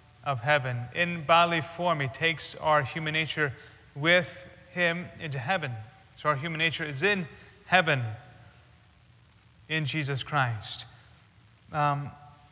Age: 30-49